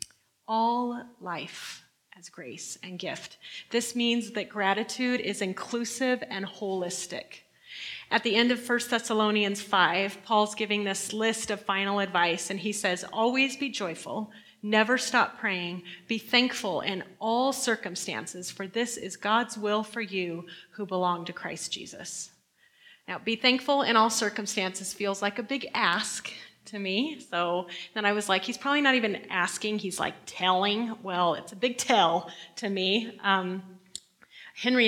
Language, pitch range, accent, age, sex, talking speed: English, 190-230 Hz, American, 30-49, female, 155 wpm